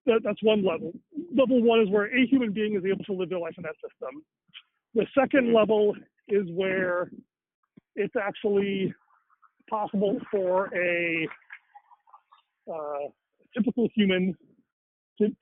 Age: 40-59